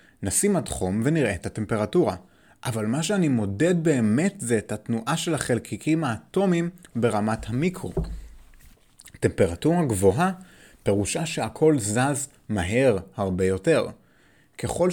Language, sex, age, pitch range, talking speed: Hebrew, male, 30-49, 105-150 Hz, 115 wpm